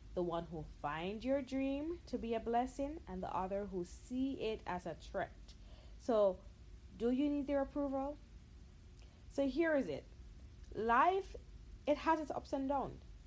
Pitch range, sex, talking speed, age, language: 185-275 Hz, female, 165 wpm, 30-49, English